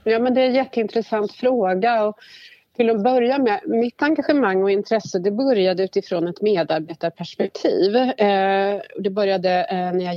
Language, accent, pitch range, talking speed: Swedish, native, 165-210 Hz, 150 wpm